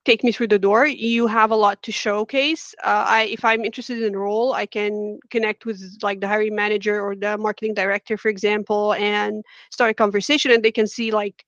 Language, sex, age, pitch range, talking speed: English, female, 30-49, 210-250 Hz, 215 wpm